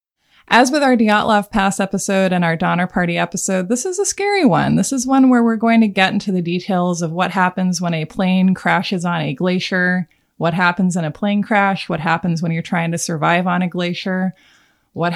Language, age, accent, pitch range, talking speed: English, 20-39, American, 175-220 Hz, 215 wpm